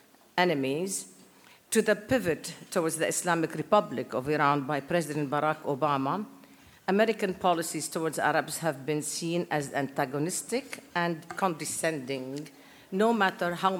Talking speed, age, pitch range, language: 120 wpm, 50-69, 150-180 Hz, English